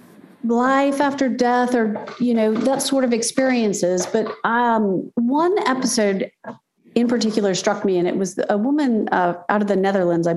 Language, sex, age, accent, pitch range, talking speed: English, female, 40-59, American, 195-265 Hz, 170 wpm